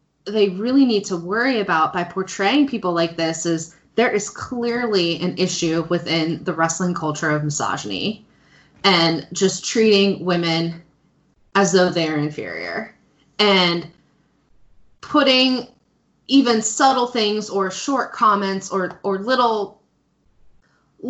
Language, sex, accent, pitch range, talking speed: English, female, American, 165-205 Hz, 120 wpm